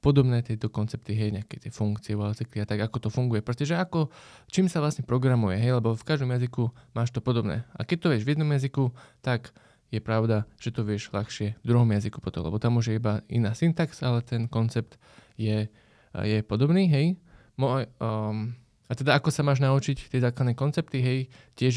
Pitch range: 110-130 Hz